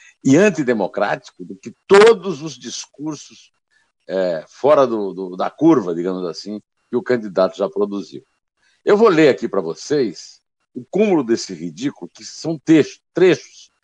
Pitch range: 110-165 Hz